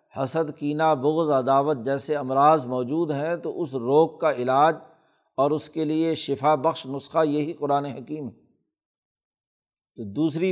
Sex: male